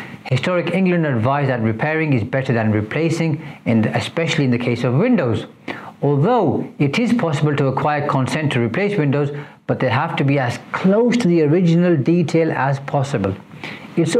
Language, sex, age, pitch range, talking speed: English, male, 60-79, 120-155 Hz, 170 wpm